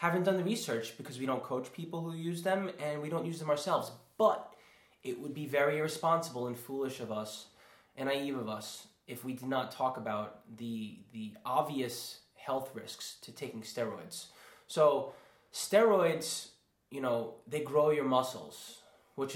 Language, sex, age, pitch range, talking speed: English, male, 20-39, 115-150 Hz, 170 wpm